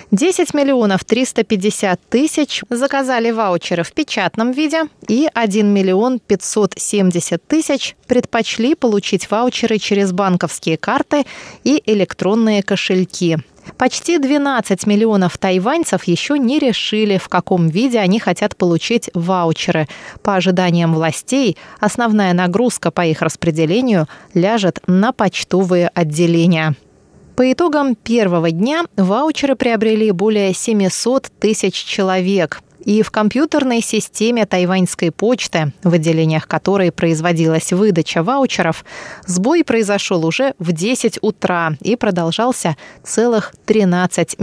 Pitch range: 180-235 Hz